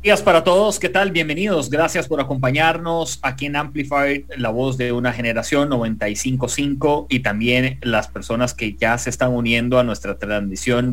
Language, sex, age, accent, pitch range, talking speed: English, male, 30-49, Mexican, 110-140 Hz, 170 wpm